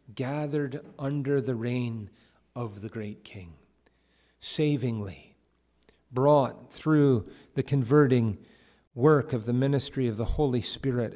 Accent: American